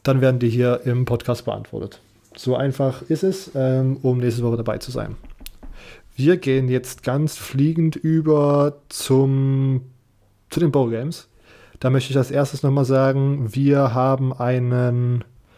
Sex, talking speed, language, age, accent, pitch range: male, 150 wpm, German, 20-39, German, 125-140 Hz